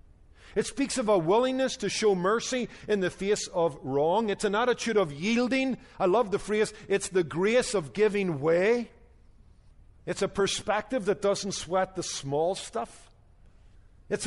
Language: English